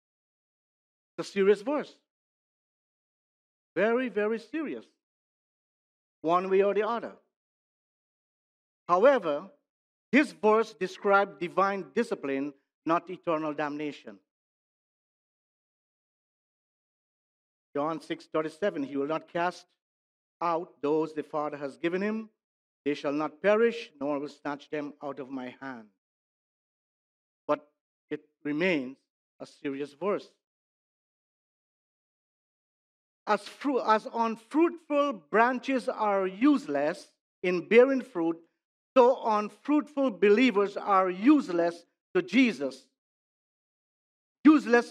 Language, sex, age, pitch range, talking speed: English, male, 50-69, 160-240 Hz, 95 wpm